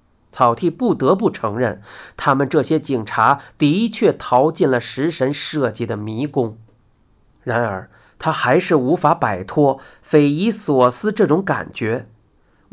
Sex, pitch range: male, 115-160 Hz